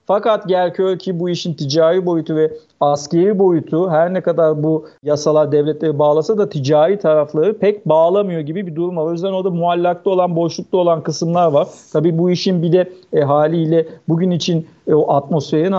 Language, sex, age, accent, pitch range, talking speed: Turkish, male, 50-69, native, 150-170 Hz, 180 wpm